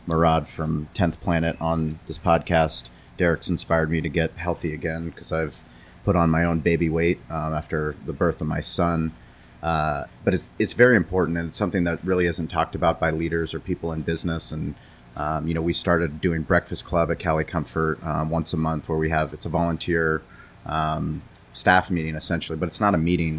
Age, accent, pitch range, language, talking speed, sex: 30-49, American, 80-85 Hz, English, 205 wpm, male